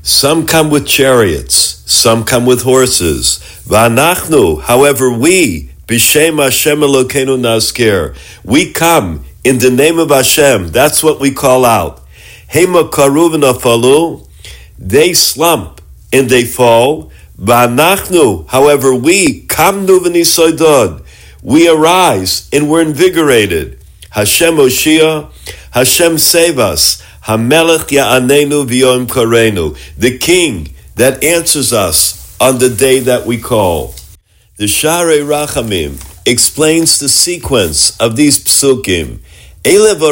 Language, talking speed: English, 95 wpm